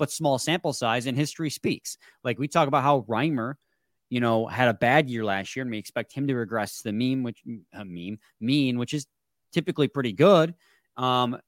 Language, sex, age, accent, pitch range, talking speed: English, male, 20-39, American, 110-145 Hz, 210 wpm